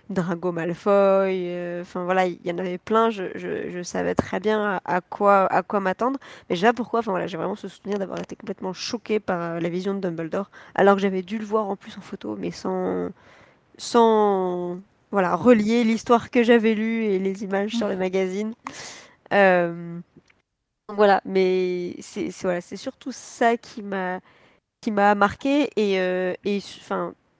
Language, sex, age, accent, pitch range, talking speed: French, female, 20-39, French, 180-210 Hz, 185 wpm